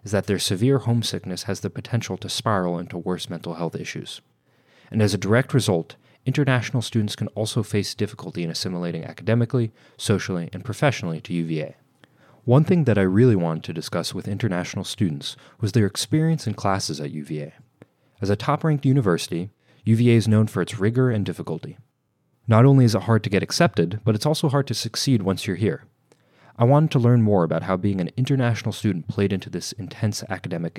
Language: English